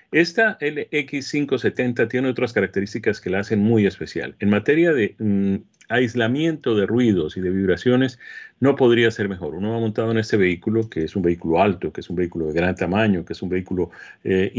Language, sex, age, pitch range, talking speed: Spanish, male, 40-59, 95-120 Hz, 190 wpm